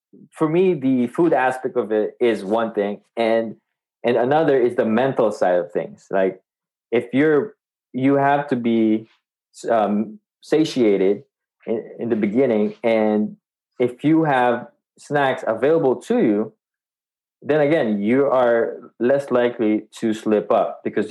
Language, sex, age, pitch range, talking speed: English, male, 20-39, 105-130 Hz, 140 wpm